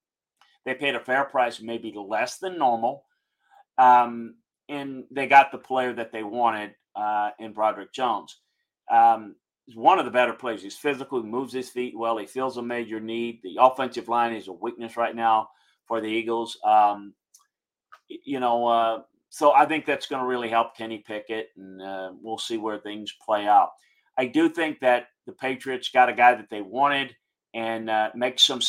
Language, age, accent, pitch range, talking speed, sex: English, 40-59, American, 110-130 Hz, 185 wpm, male